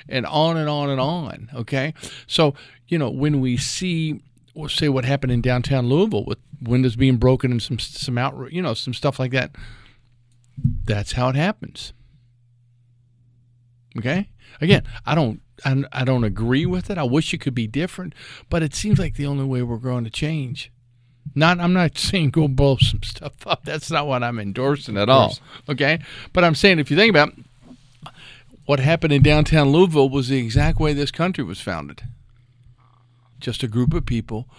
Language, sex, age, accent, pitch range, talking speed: English, male, 50-69, American, 120-145 Hz, 185 wpm